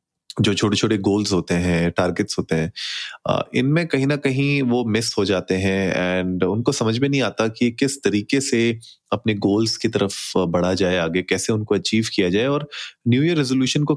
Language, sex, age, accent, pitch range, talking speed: Hindi, male, 30-49, native, 100-135 Hz, 200 wpm